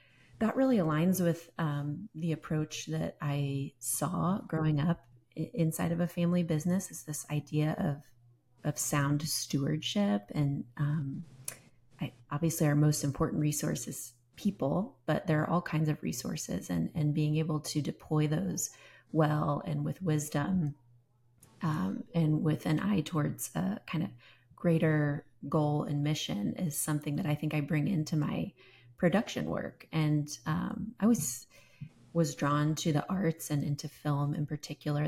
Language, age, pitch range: English, 30-49, 145-165 Hz